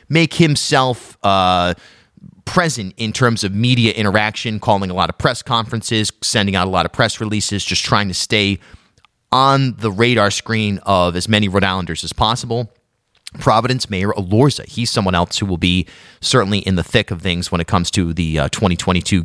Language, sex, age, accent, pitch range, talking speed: English, male, 30-49, American, 95-120 Hz, 185 wpm